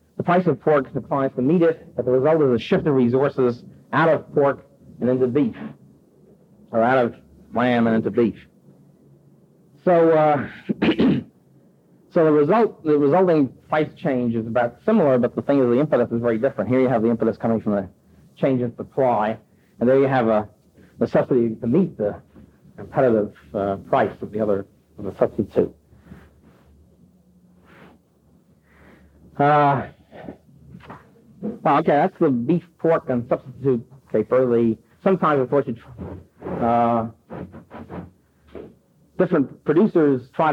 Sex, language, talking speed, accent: male, English, 140 wpm, American